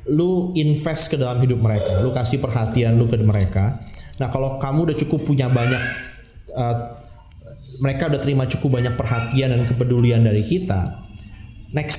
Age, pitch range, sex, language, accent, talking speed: 20-39, 105-135 Hz, male, Indonesian, native, 155 wpm